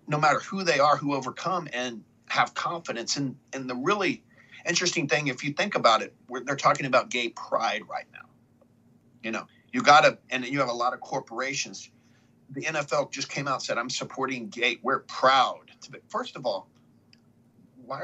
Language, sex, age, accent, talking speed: English, male, 50-69, American, 195 wpm